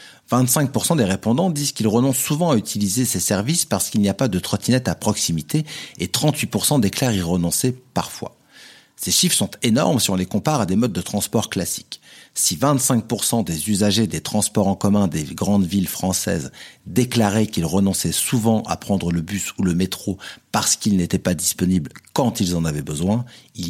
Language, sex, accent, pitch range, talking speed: French, male, French, 95-125 Hz, 185 wpm